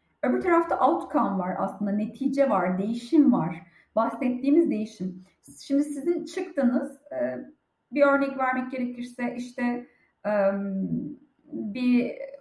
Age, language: 30-49, Turkish